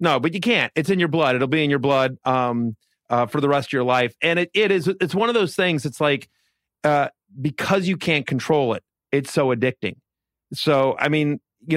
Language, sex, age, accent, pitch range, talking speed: English, male, 30-49, American, 125-155 Hz, 230 wpm